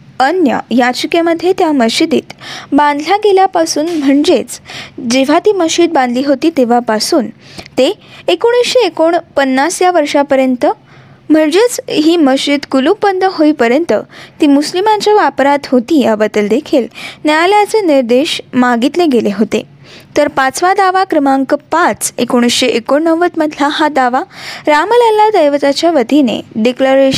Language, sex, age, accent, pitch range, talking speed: Marathi, female, 20-39, native, 270-355 Hz, 85 wpm